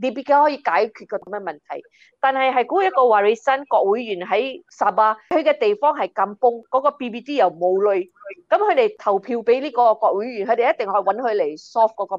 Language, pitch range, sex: Chinese, 190-265 Hz, female